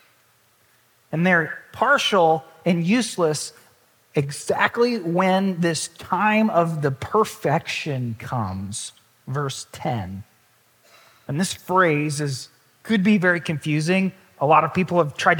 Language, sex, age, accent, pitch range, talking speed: English, male, 30-49, American, 130-195 Hz, 115 wpm